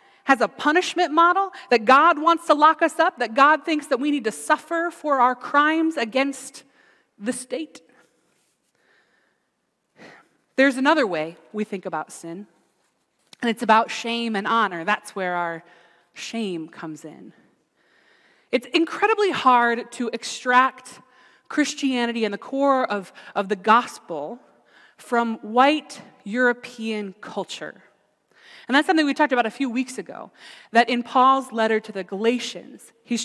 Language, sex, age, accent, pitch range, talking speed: English, female, 30-49, American, 220-280 Hz, 145 wpm